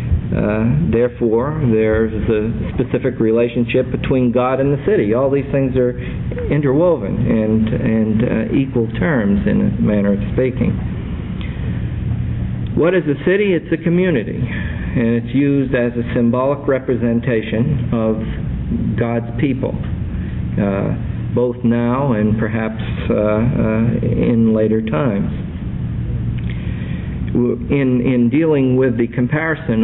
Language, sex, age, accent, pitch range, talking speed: English, male, 50-69, American, 110-125 Hz, 120 wpm